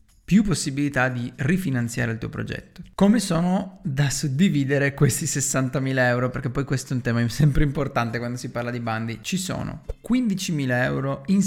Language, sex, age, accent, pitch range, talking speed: Italian, male, 30-49, native, 115-170 Hz, 165 wpm